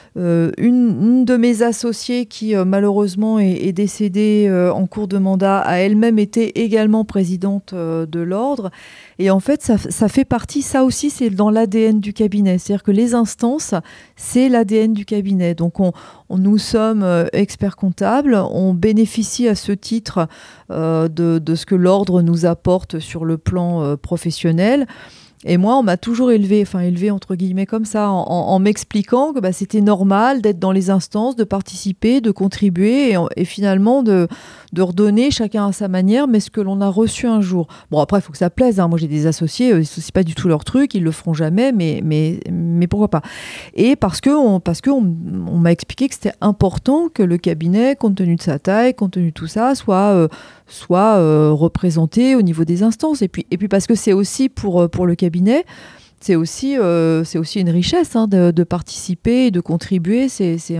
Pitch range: 175-225 Hz